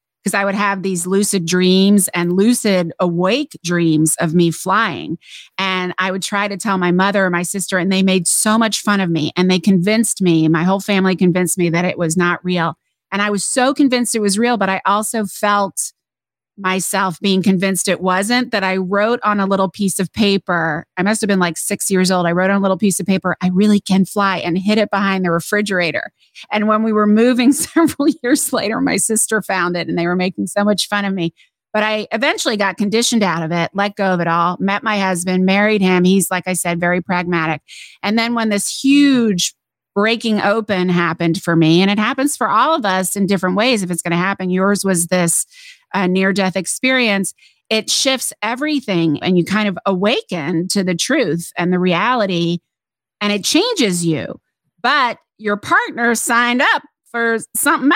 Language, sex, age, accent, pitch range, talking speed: English, female, 30-49, American, 180-215 Hz, 210 wpm